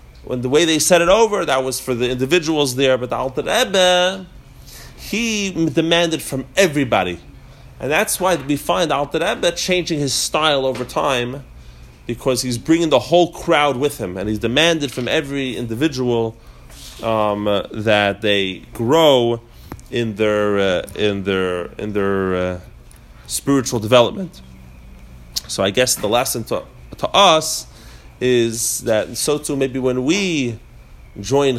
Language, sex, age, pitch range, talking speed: English, male, 30-49, 100-140 Hz, 145 wpm